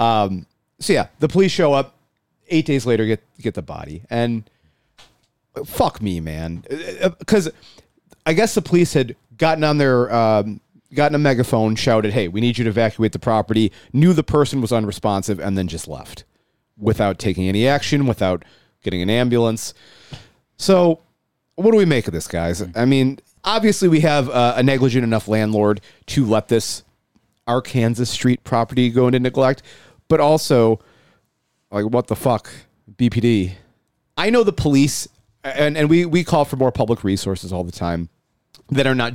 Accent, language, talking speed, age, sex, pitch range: American, English, 170 wpm, 40-59, male, 110-150 Hz